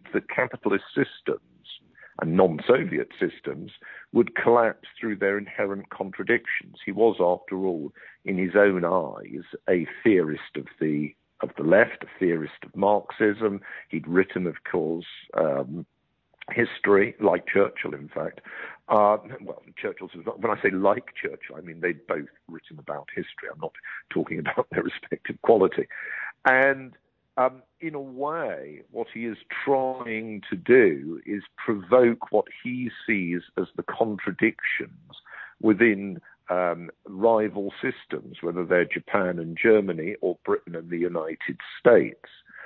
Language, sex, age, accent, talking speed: English, male, 50-69, British, 135 wpm